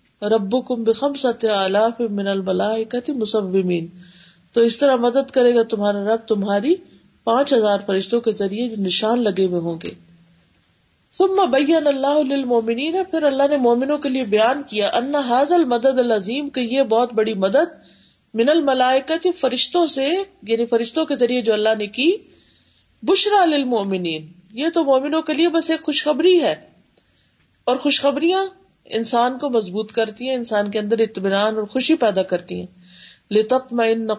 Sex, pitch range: female, 200-270 Hz